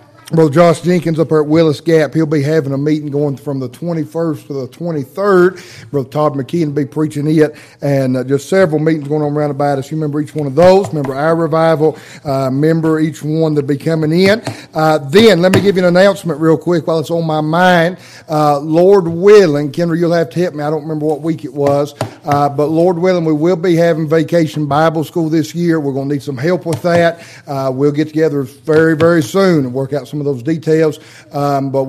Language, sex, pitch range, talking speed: English, male, 140-165 Hz, 230 wpm